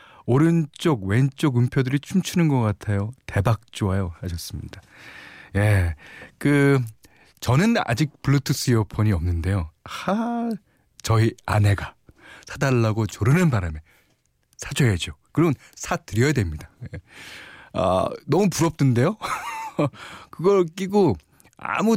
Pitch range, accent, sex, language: 95-145 Hz, native, male, Korean